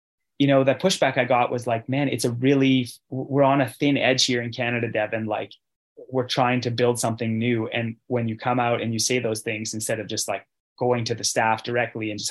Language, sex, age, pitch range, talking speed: English, male, 20-39, 115-140 Hz, 240 wpm